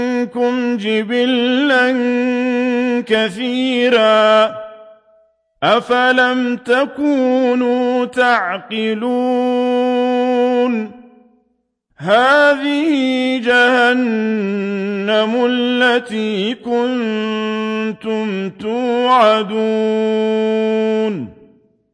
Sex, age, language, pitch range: male, 50-69, Arabic, 220-250 Hz